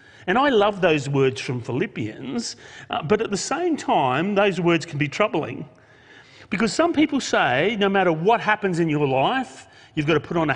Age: 40-59